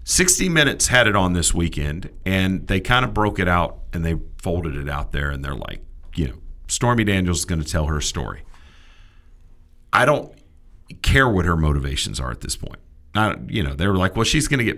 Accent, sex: American, male